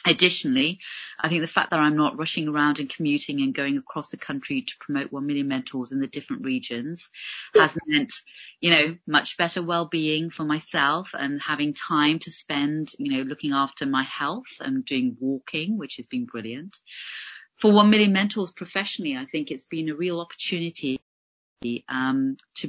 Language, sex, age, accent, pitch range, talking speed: English, female, 30-49, British, 130-175 Hz, 175 wpm